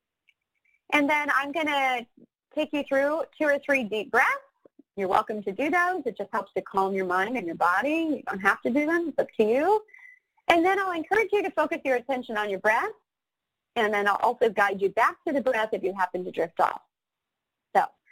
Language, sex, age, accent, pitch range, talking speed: English, female, 30-49, American, 200-300 Hz, 220 wpm